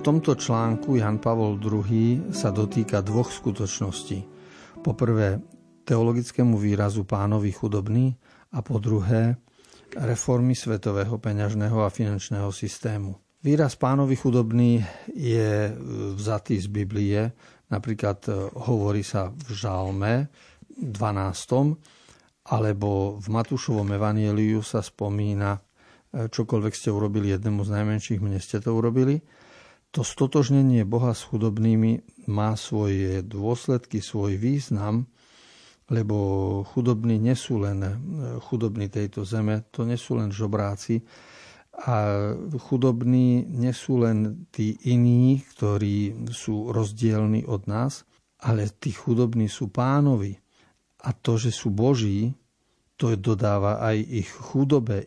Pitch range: 105-120 Hz